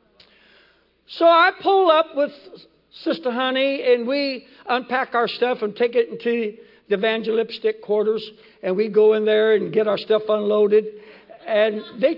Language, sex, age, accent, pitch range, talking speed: English, male, 60-79, American, 190-255 Hz, 155 wpm